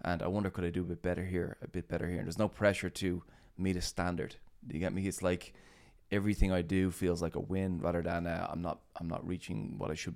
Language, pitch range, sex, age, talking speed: English, 85-100 Hz, male, 20-39, 270 wpm